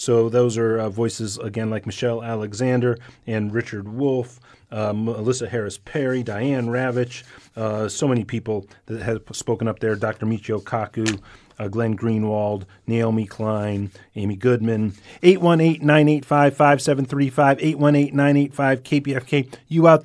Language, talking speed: English, 120 wpm